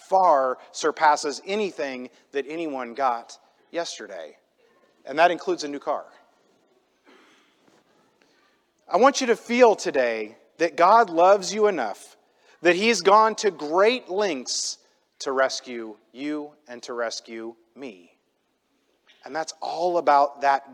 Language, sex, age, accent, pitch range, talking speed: English, male, 40-59, American, 130-185 Hz, 120 wpm